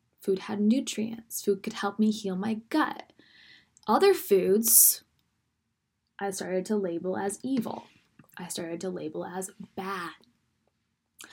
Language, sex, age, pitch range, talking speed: English, female, 10-29, 180-220 Hz, 125 wpm